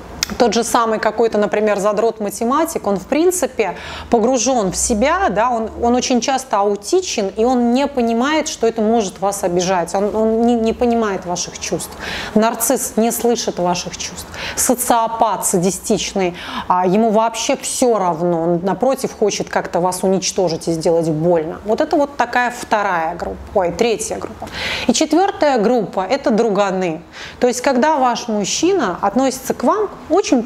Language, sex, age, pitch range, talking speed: Russian, female, 30-49, 195-270 Hz, 150 wpm